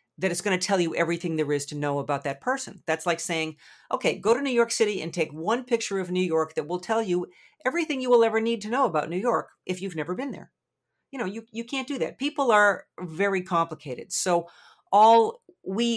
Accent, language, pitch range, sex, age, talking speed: American, English, 155-215 Hz, female, 50-69, 235 wpm